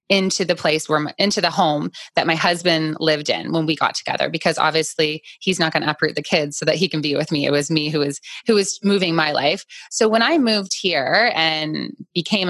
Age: 20-39